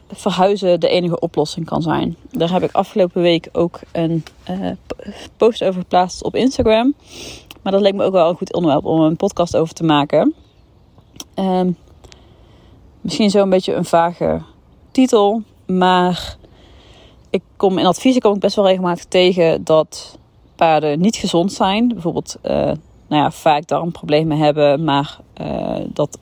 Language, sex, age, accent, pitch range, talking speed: Dutch, female, 30-49, Dutch, 150-180 Hz, 155 wpm